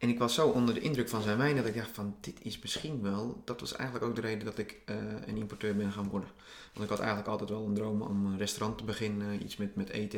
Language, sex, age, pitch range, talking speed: Dutch, male, 30-49, 105-125 Hz, 290 wpm